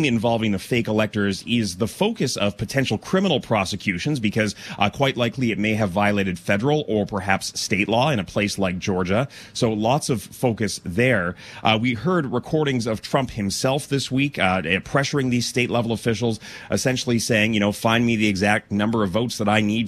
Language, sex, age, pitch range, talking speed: English, male, 30-49, 105-130 Hz, 185 wpm